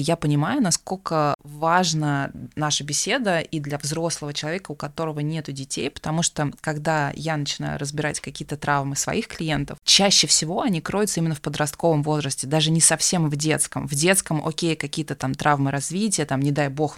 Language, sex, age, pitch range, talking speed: Russian, female, 20-39, 145-175 Hz, 170 wpm